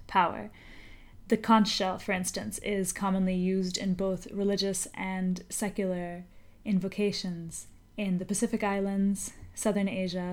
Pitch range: 185-215 Hz